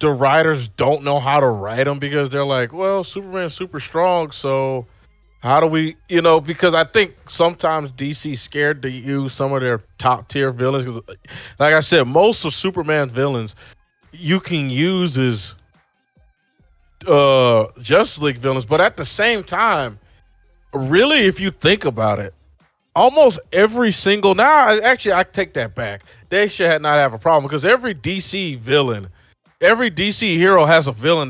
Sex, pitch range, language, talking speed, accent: male, 120-160 Hz, English, 165 wpm, American